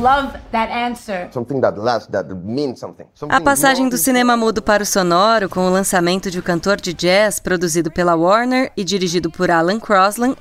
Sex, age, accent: female, 20-39, Brazilian